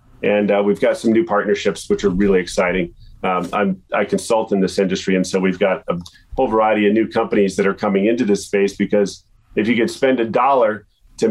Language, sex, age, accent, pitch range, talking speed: English, male, 40-59, American, 100-120 Hz, 225 wpm